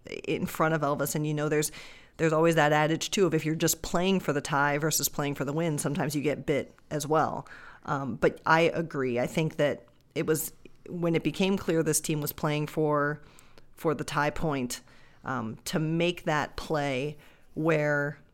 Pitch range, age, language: 145-165 Hz, 40-59, English